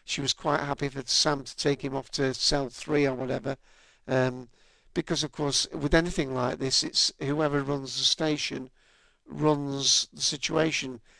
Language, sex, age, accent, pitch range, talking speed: English, male, 50-69, British, 135-155 Hz, 165 wpm